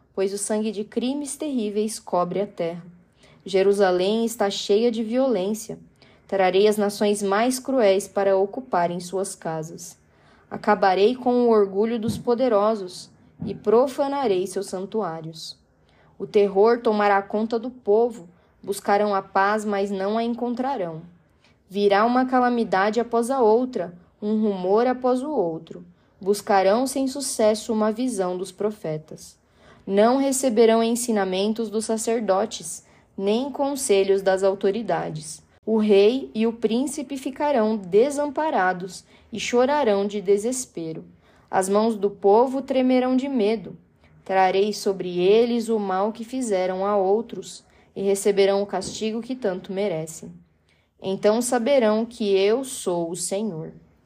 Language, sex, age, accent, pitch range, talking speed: Portuguese, female, 10-29, Brazilian, 195-230 Hz, 125 wpm